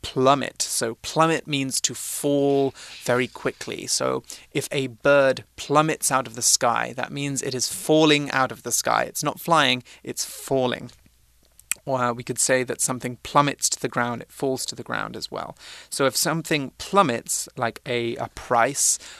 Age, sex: 30-49, male